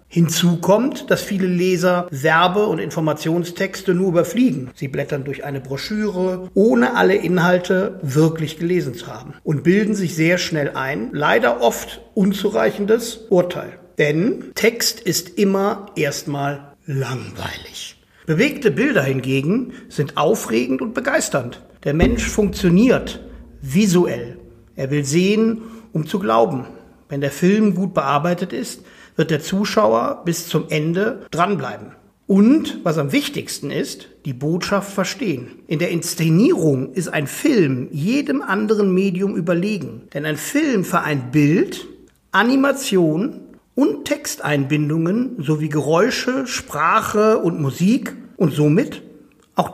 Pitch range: 150-210 Hz